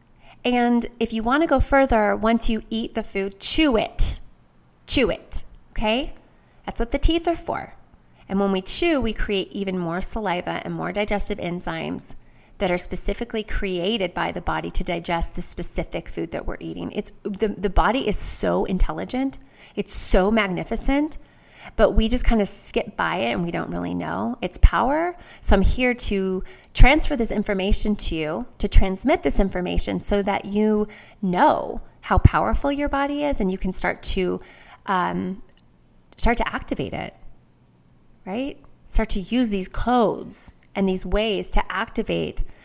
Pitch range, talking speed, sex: 180-230 Hz, 165 wpm, female